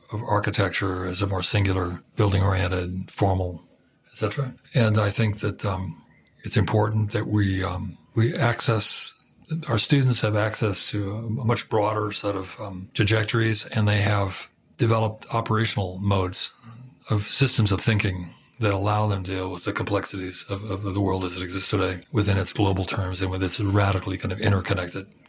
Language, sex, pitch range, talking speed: English, male, 95-115 Hz, 170 wpm